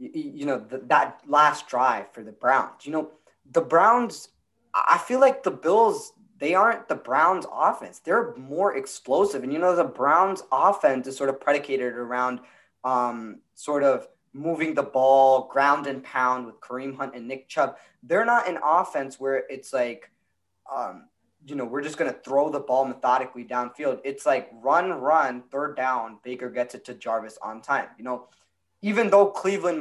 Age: 20-39